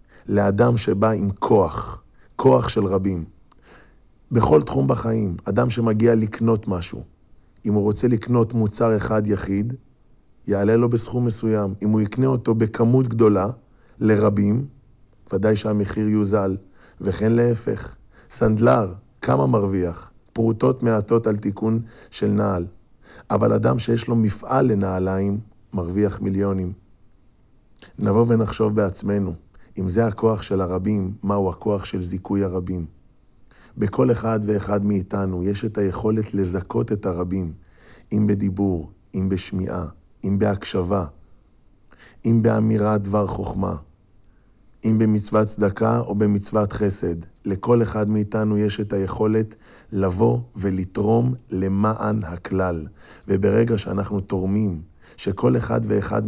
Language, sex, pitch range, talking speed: Hebrew, male, 95-110 Hz, 115 wpm